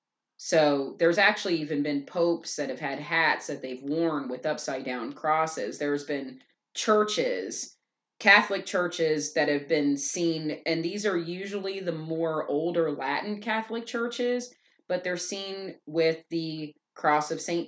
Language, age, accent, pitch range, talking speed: English, 30-49, American, 155-200 Hz, 150 wpm